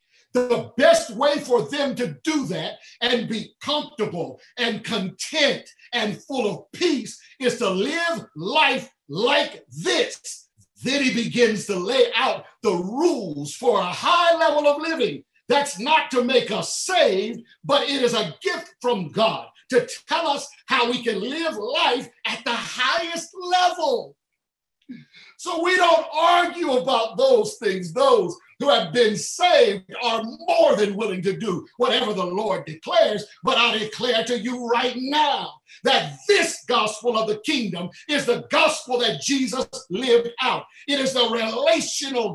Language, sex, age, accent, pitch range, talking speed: English, male, 50-69, American, 225-315 Hz, 155 wpm